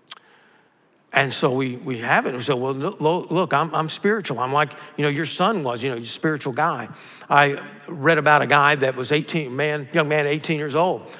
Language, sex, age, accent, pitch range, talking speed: English, male, 50-69, American, 130-160 Hz, 210 wpm